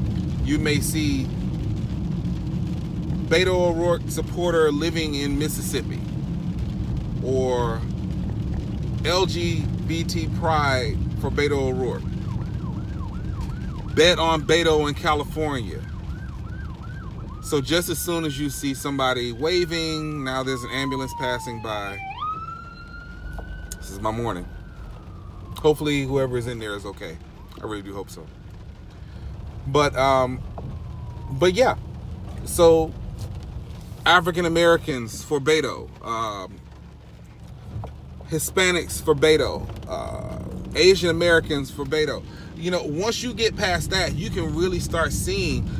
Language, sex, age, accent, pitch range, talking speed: English, male, 30-49, American, 100-160 Hz, 105 wpm